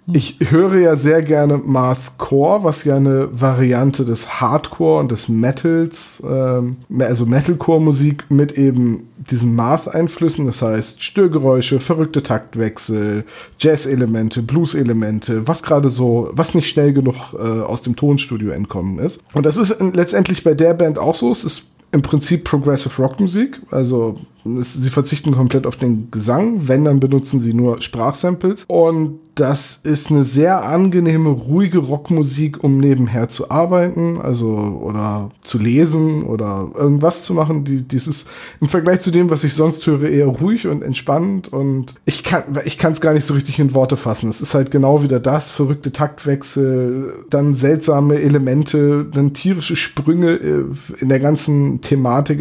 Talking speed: 150 wpm